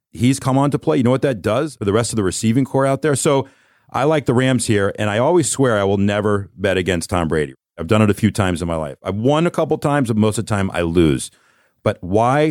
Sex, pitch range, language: male, 95-115 Hz, English